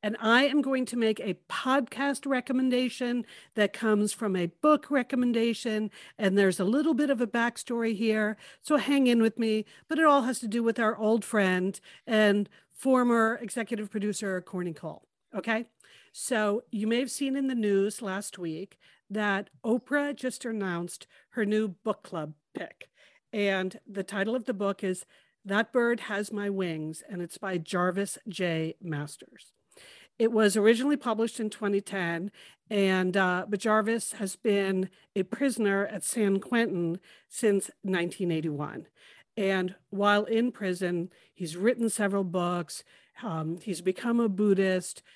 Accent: American